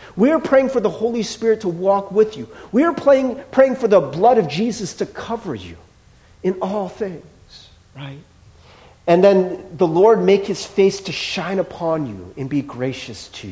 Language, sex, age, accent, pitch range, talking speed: English, male, 40-59, American, 140-205 Hz, 180 wpm